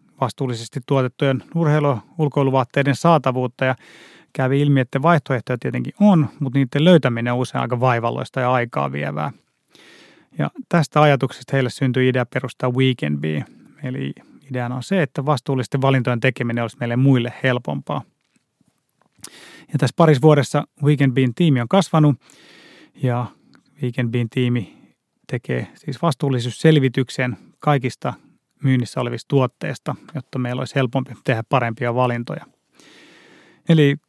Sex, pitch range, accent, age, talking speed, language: male, 125-150 Hz, native, 30-49, 125 wpm, Finnish